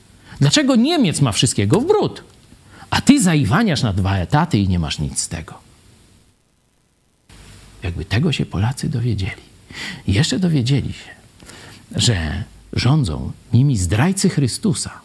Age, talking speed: 50-69, 130 wpm